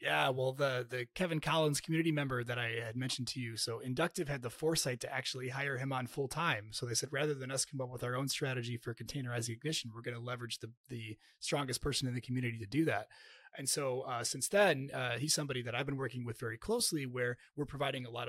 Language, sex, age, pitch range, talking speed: English, male, 30-49, 120-150 Hz, 245 wpm